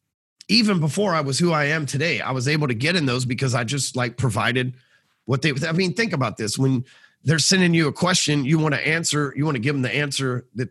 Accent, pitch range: American, 125-155 Hz